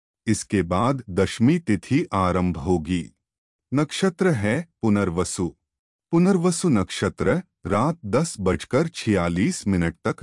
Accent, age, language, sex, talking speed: native, 30-49, Hindi, male, 100 wpm